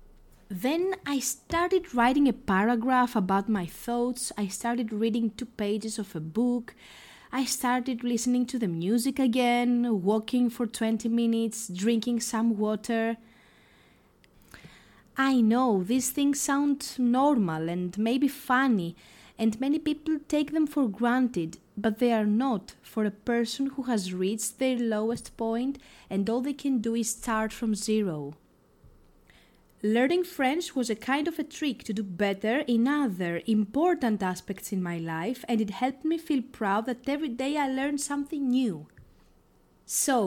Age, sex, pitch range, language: 20-39, female, 215-275 Hz, Greek